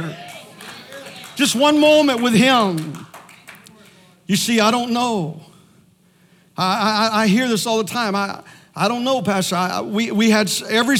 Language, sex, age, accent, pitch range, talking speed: English, male, 50-69, American, 190-250 Hz, 155 wpm